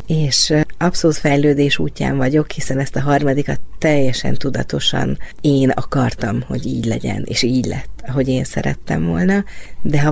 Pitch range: 130-165 Hz